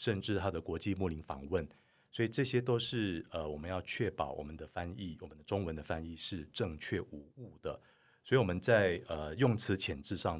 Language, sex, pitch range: Chinese, male, 85-105 Hz